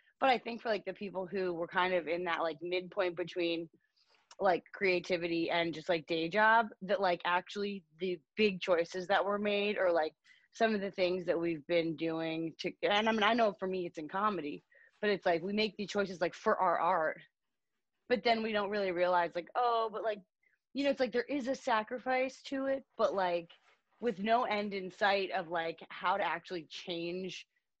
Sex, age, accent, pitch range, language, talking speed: female, 20-39, American, 170-215 Hz, English, 210 wpm